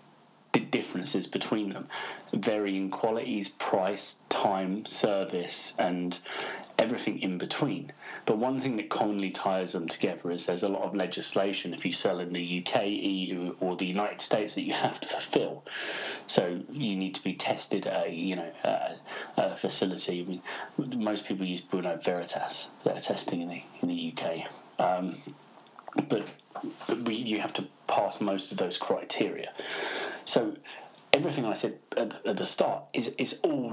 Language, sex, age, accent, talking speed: English, male, 30-49, British, 160 wpm